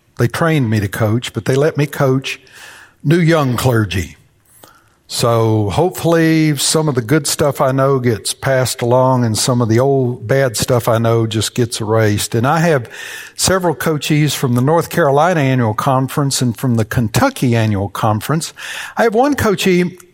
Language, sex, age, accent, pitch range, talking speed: English, male, 60-79, American, 120-160 Hz, 175 wpm